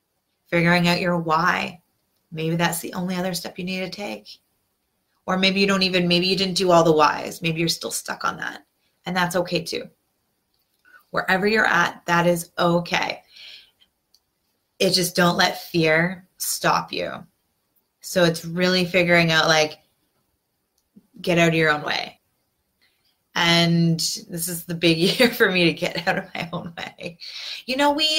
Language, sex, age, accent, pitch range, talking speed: English, female, 20-39, American, 170-190 Hz, 170 wpm